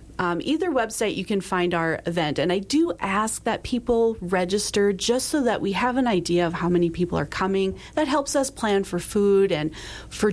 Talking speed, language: 210 wpm, English